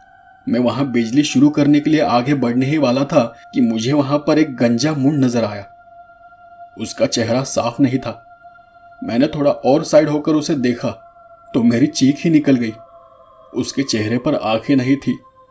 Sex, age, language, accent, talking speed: male, 30-49, Hindi, native, 175 wpm